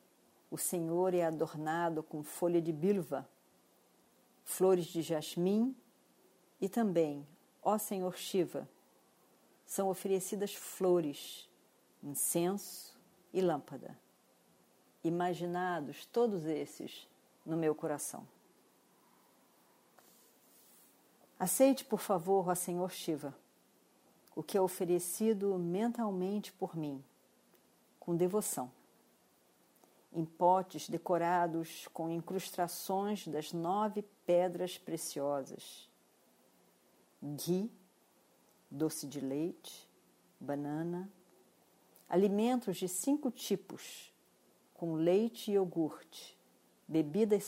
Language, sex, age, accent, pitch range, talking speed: Portuguese, female, 50-69, Brazilian, 160-190 Hz, 85 wpm